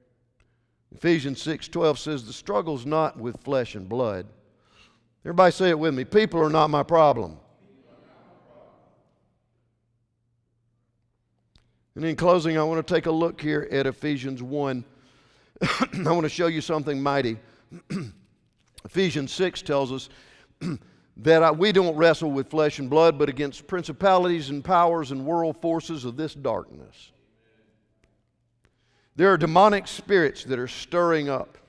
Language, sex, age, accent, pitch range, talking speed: English, male, 50-69, American, 120-160 Hz, 135 wpm